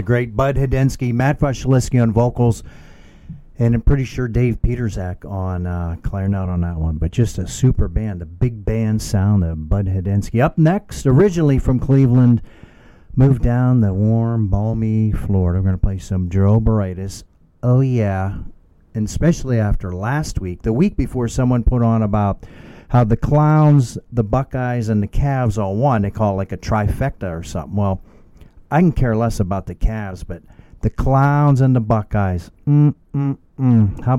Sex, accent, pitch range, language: male, American, 95-125 Hz, English